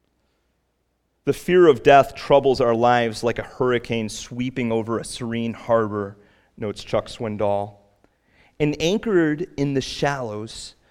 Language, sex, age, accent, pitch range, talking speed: English, male, 30-49, American, 105-145 Hz, 125 wpm